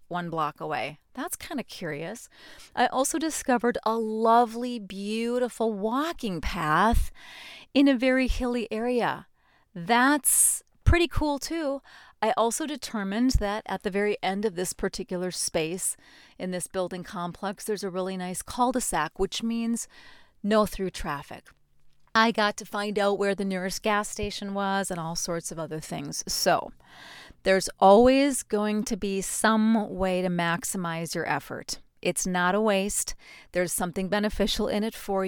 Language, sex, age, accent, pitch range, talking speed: English, female, 30-49, American, 185-235 Hz, 150 wpm